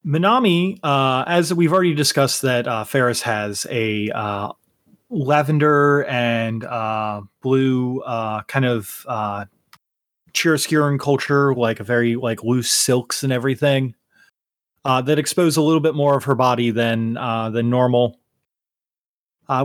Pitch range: 115-145 Hz